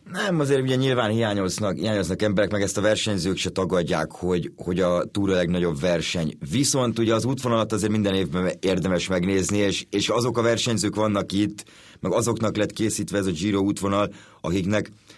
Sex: male